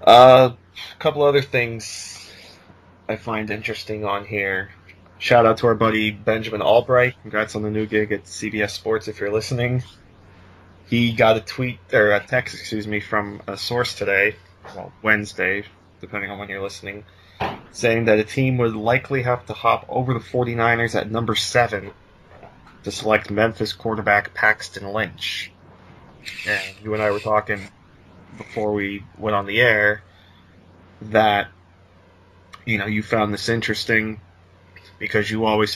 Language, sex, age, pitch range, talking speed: English, male, 20-39, 95-110 Hz, 150 wpm